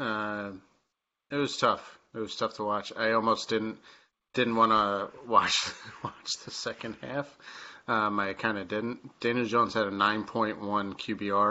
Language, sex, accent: English, male, American